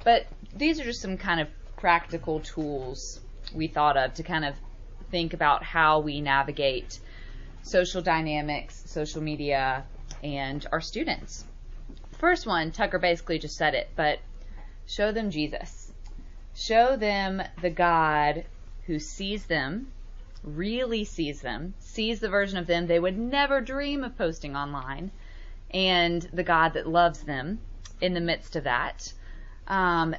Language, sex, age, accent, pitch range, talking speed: English, female, 20-39, American, 150-200 Hz, 145 wpm